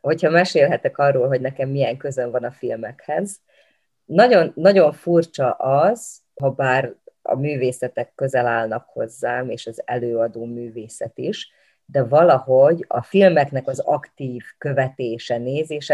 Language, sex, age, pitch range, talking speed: Hungarian, female, 30-49, 130-160 Hz, 130 wpm